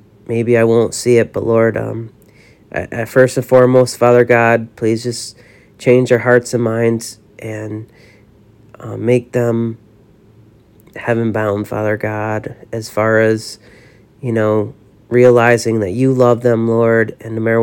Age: 40-59